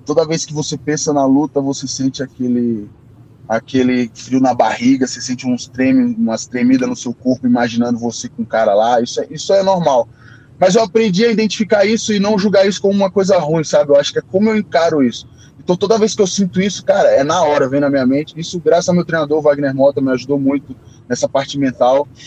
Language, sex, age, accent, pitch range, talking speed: Portuguese, male, 10-29, Brazilian, 130-185 Hz, 230 wpm